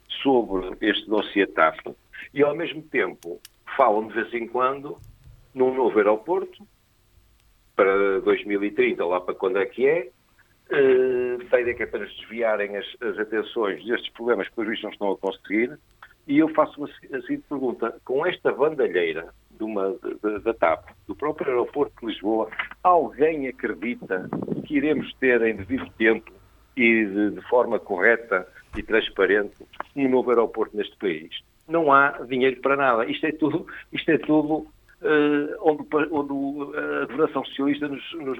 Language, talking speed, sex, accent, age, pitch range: Portuguese, 160 wpm, male, Portuguese, 60-79, 115-155 Hz